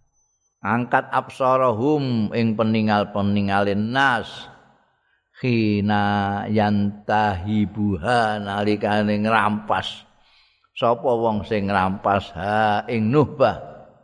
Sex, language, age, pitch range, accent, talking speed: male, Indonesian, 50-69, 100-125 Hz, native, 80 wpm